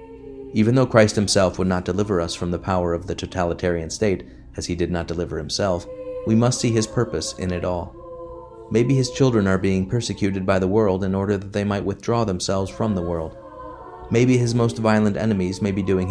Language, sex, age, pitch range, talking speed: English, male, 30-49, 90-115 Hz, 210 wpm